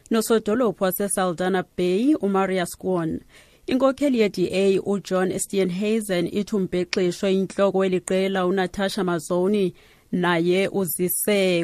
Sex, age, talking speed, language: female, 30-49, 115 wpm, English